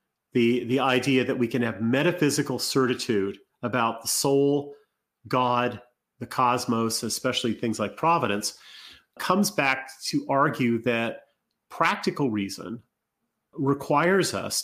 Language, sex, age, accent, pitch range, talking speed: English, male, 40-59, American, 115-145 Hz, 115 wpm